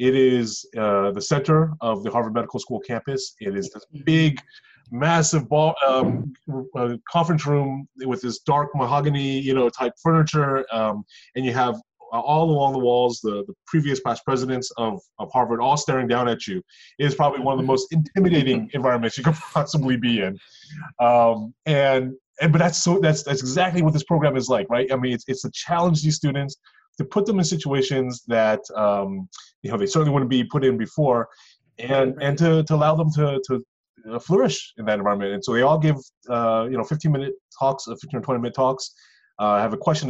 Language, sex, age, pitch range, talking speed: English, male, 30-49, 115-150 Hz, 205 wpm